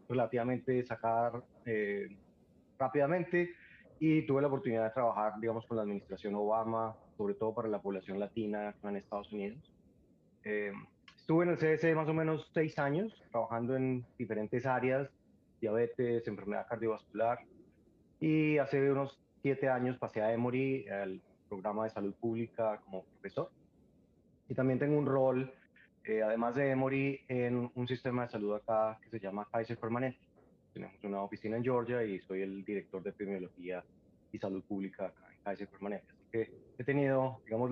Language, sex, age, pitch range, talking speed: Spanish, male, 30-49, 105-130 Hz, 160 wpm